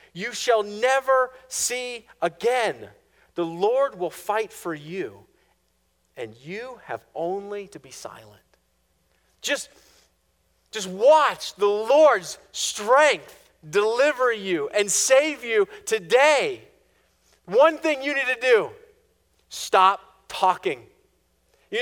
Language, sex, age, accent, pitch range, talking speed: English, male, 40-59, American, 170-265 Hz, 105 wpm